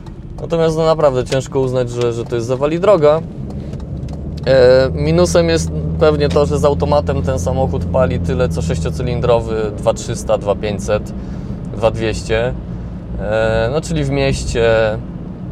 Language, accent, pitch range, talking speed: Polish, native, 90-125 Hz, 120 wpm